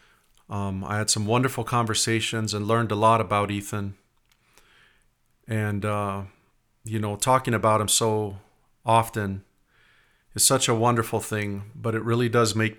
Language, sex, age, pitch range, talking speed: English, male, 40-59, 100-115 Hz, 145 wpm